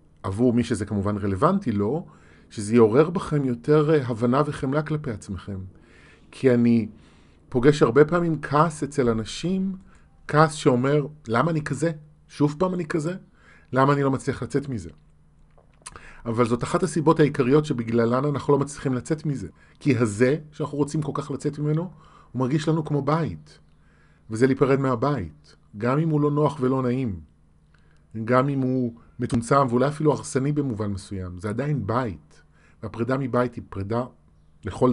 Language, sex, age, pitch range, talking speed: Hebrew, male, 40-59, 105-145 Hz, 155 wpm